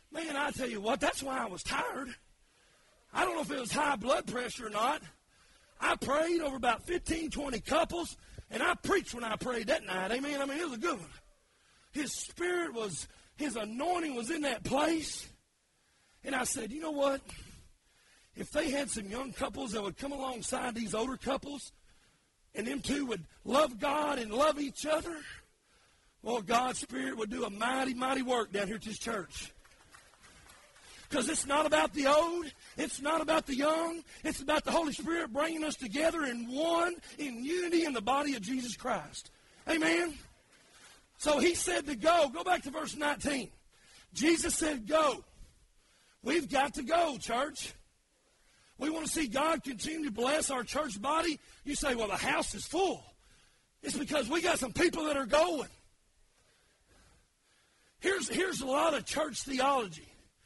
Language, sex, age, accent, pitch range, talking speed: English, male, 40-59, American, 255-315 Hz, 175 wpm